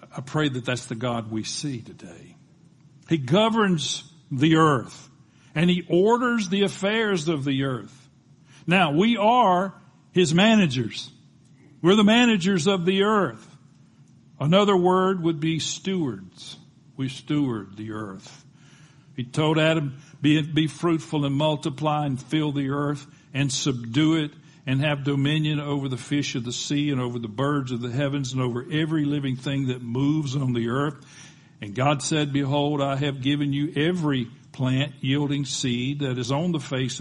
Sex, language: male, English